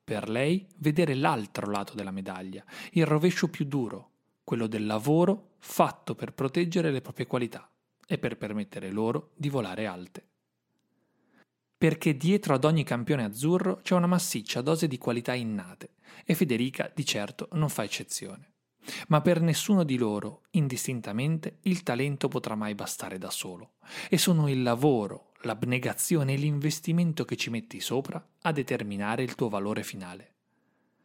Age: 30-49